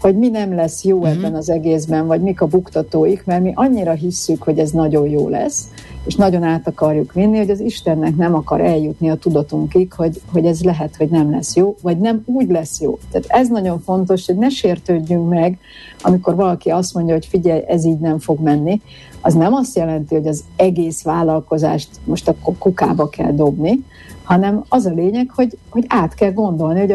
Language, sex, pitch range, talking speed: Hungarian, female, 155-190 Hz, 200 wpm